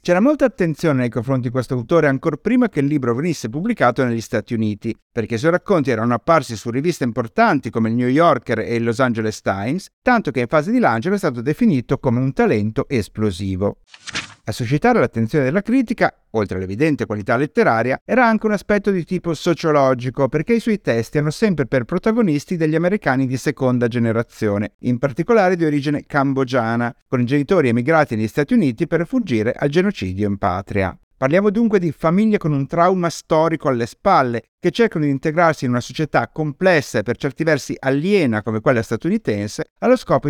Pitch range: 115-170 Hz